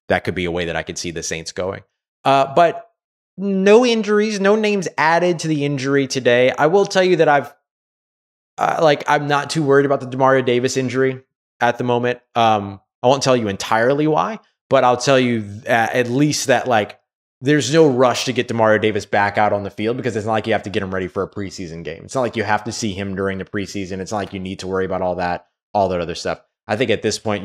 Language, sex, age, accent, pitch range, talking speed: English, male, 20-39, American, 100-135 Hz, 250 wpm